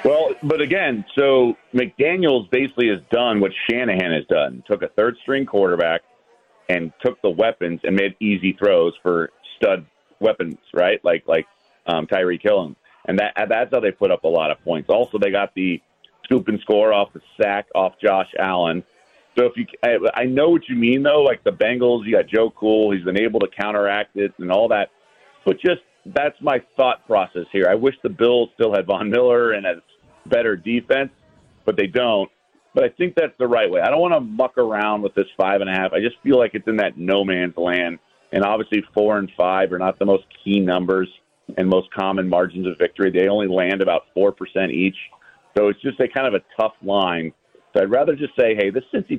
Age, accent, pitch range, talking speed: 40-59, American, 95-125 Hz, 210 wpm